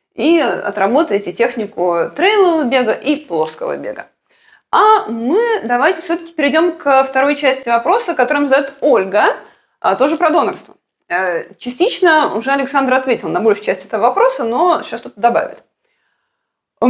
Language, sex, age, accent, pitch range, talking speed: Russian, female, 20-39, native, 245-360 Hz, 135 wpm